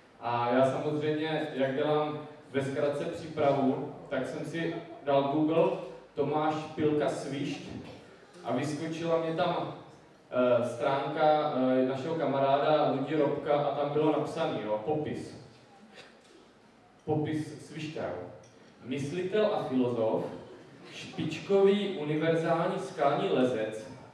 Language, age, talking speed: Czech, 20-39, 100 wpm